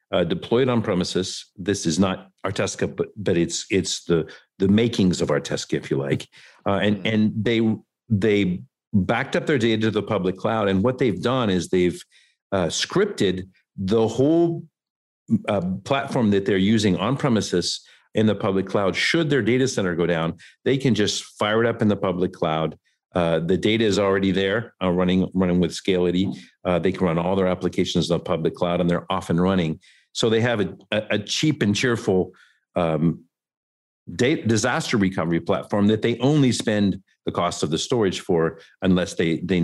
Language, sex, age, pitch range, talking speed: English, male, 50-69, 90-110 Hz, 185 wpm